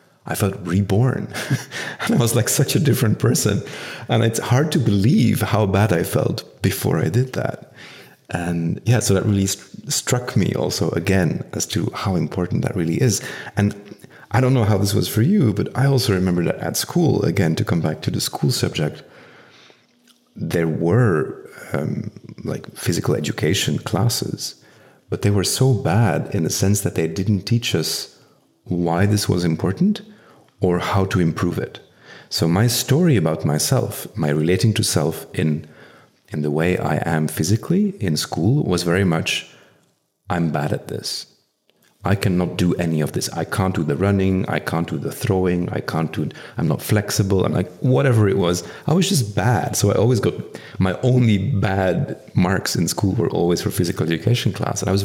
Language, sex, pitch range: English, male, 90-120 Hz